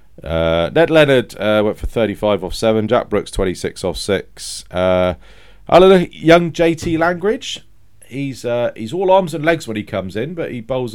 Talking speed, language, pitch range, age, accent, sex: 180 wpm, English, 100-130 Hz, 40-59, British, male